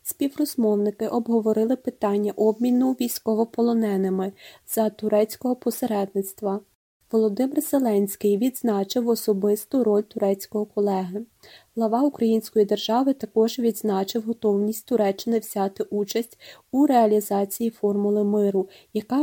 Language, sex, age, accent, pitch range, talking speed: Ukrainian, female, 20-39, native, 205-235 Hz, 90 wpm